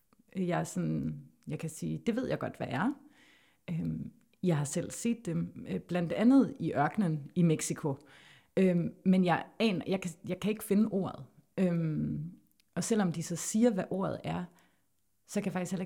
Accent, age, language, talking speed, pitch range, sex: native, 30-49, Danish, 180 wpm, 150-195 Hz, female